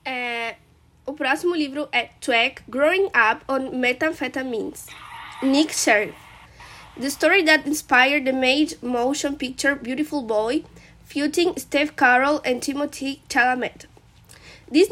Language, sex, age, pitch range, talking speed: Portuguese, female, 20-39, 255-310 Hz, 115 wpm